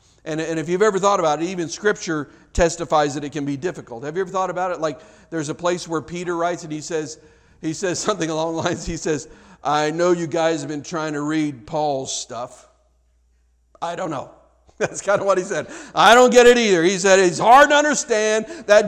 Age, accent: 50-69, American